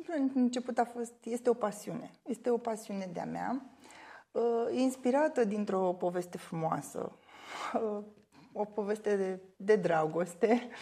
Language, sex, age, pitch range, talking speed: Romanian, female, 20-39, 180-235 Hz, 110 wpm